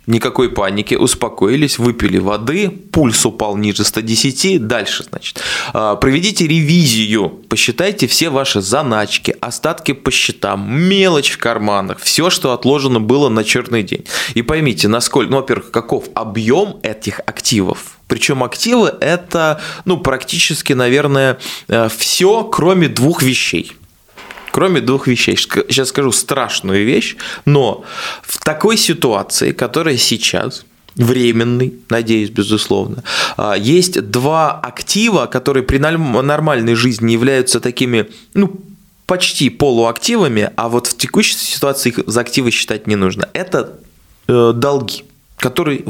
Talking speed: 120 wpm